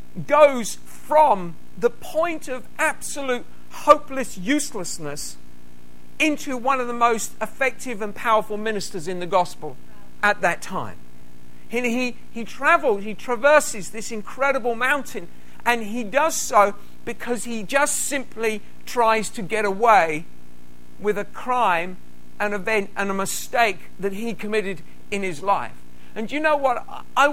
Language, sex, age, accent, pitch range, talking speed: English, male, 50-69, British, 190-260 Hz, 140 wpm